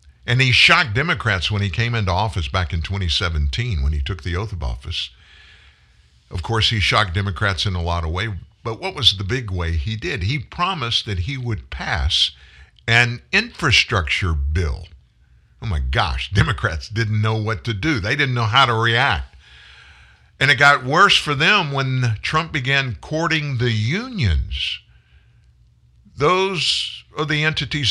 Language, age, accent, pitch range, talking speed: English, 50-69, American, 85-130 Hz, 165 wpm